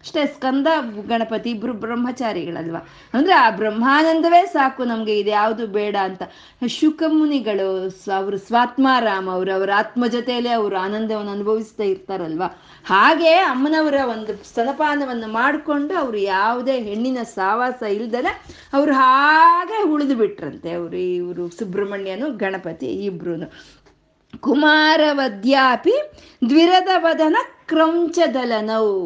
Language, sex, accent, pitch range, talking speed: Kannada, female, native, 205-305 Hz, 90 wpm